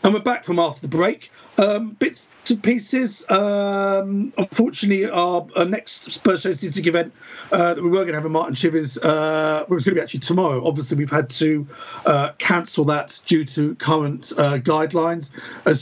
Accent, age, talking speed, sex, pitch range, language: British, 50-69, 200 wpm, male, 140-185 Hz, English